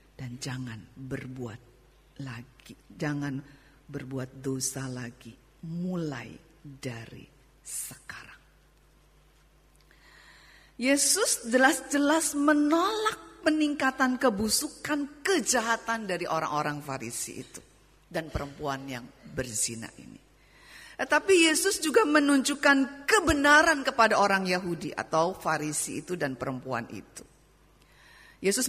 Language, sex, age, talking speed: Indonesian, female, 50-69, 85 wpm